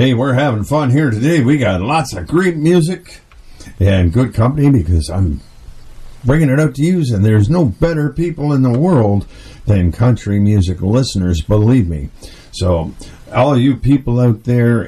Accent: American